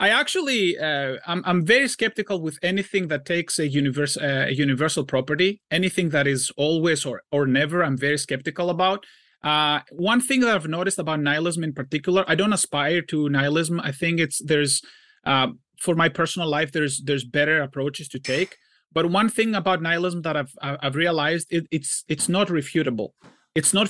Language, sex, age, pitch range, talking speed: English, male, 30-49, 145-190 Hz, 185 wpm